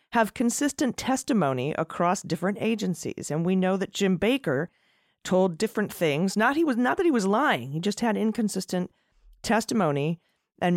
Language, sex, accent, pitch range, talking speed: English, female, American, 160-215 Hz, 160 wpm